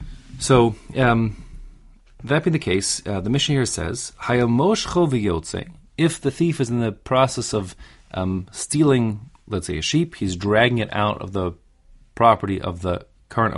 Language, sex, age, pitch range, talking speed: English, male, 30-49, 95-130 Hz, 155 wpm